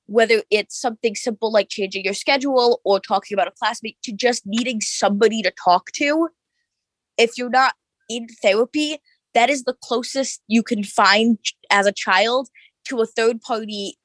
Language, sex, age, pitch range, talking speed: English, female, 20-39, 195-245 Hz, 160 wpm